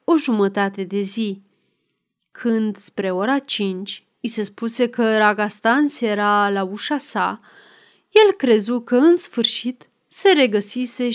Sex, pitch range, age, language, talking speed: female, 210-275 Hz, 30-49, Romanian, 130 wpm